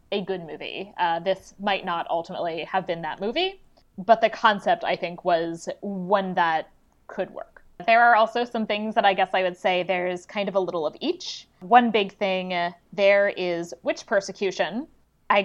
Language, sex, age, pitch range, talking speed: English, female, 20-39, 180-220 Hz, 185 wpm